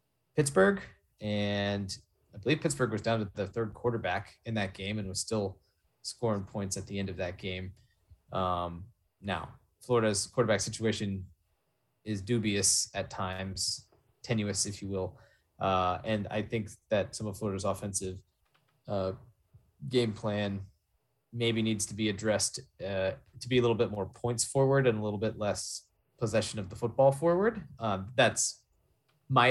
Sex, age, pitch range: male, 20-39, 100-120 Hz